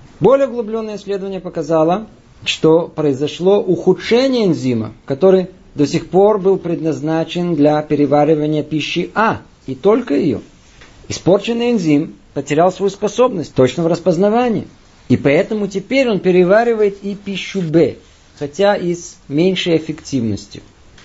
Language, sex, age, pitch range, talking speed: Russian, male, 50-69, 150-215 Hz, 120 wpm